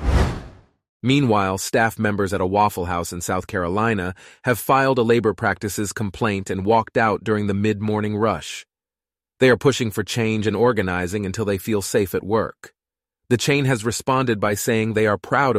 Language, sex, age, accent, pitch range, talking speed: English, male, 30-49, American, 95-120 Hz, 175 wpm